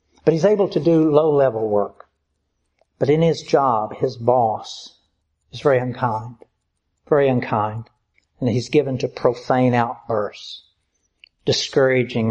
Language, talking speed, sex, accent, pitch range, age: English, 120 wpm, male, American, 110-135 Hz, 60-79